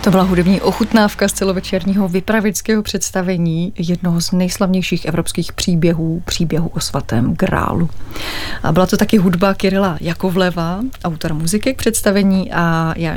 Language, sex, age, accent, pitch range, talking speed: Czech, female, 30-49, native, 175-205 Hz, 135 wpm